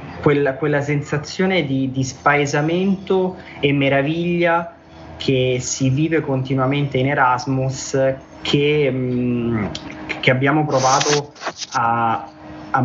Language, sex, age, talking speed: Italian, male, 20-39, 100 wpm